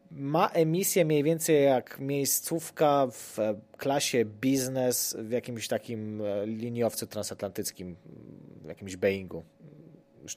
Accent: native